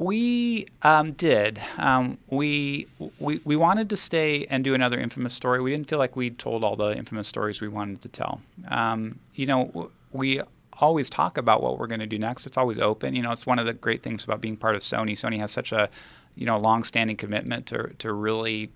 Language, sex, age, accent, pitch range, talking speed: English, male, 30-49, American, 105-125 Hz, 225 wpm